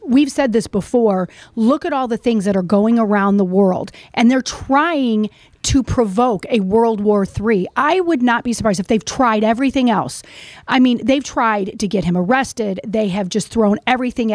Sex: female